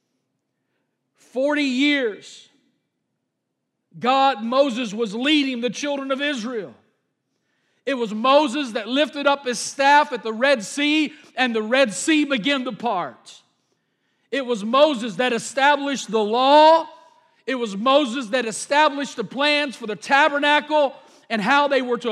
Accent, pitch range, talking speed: American, 230-290 Hz, 140 wpm